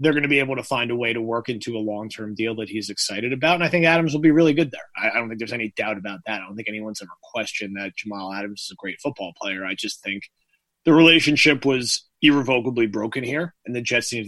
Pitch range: 105-135 Hz